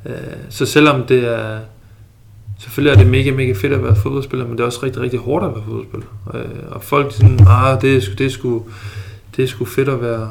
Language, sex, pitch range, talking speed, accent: Danish, male, 105-130 Hz, 205 wpm, native